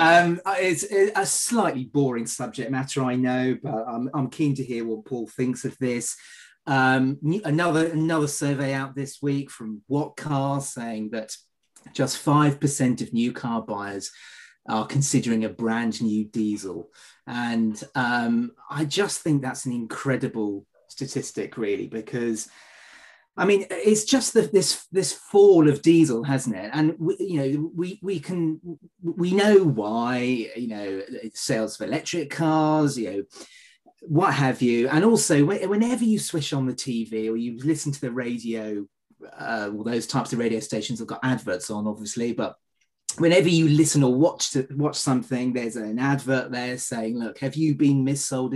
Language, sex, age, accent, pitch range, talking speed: English, male, 30-49, British, 115-155 Hz, 170 wpm